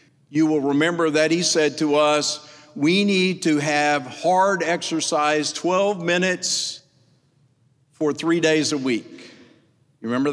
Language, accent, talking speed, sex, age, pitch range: English, American, 135 wpm, male, 50-69, 145-175 Hz